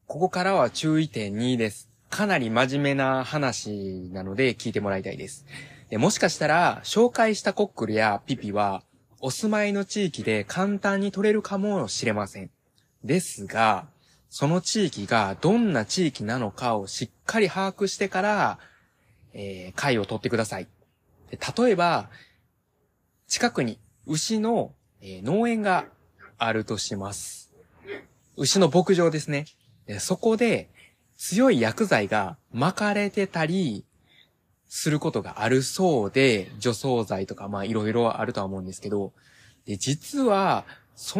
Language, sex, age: Japanese, male, 20-39